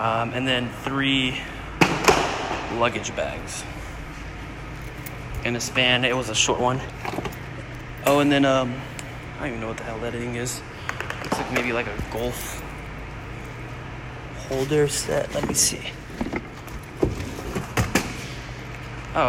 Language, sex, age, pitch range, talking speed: English, male, 20-39, 115-135 Hz, 125 wpm